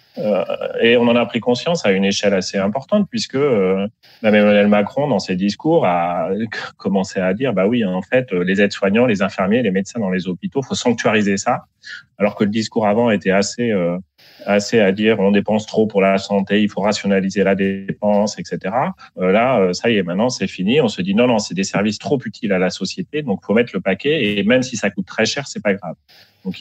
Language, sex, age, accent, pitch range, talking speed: French, male, 30-49, French, 100-135 Hz, 230 wpm